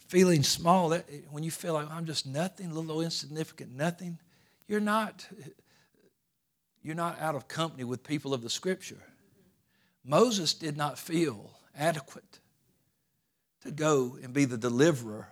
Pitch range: 130-165 Hz